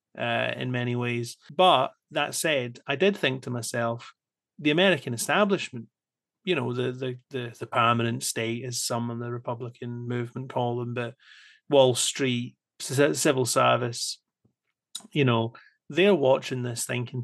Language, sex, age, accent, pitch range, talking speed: English, male, 30-49, British, 120-140 Hz, 145 wpm